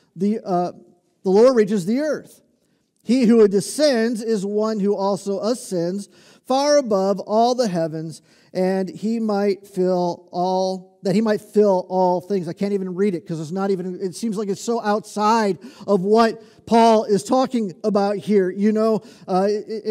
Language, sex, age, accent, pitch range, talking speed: English, male, 40-59, American, 195-250 Hz, 170 wpm